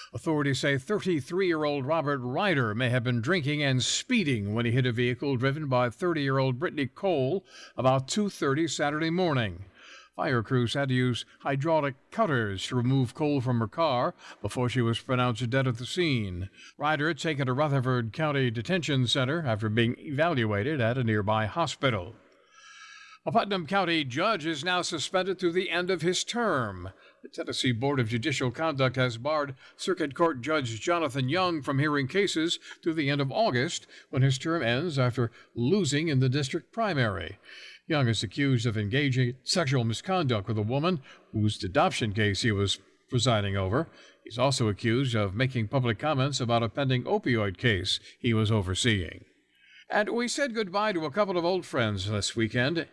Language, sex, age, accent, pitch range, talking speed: English, male, 60-79, American, 120-165 Hz, 170 wpm